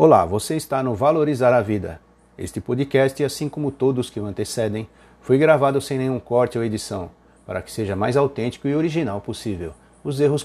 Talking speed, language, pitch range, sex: 185 wpm, Portuguese, 110-150 Hz, male